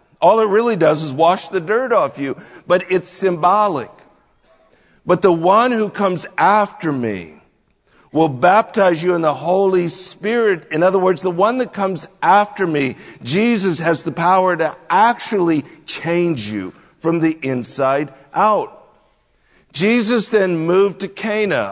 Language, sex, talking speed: English, male, 145 wpm